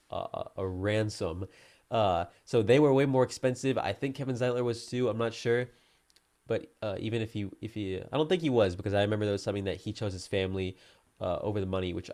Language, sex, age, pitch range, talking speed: English, male, 20-39, 100-125 Hz, 240 wpm